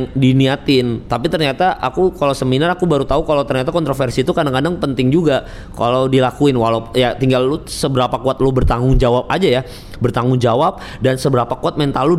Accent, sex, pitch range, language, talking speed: native, male, 120-150 Hz, Indonesian, 175 wpm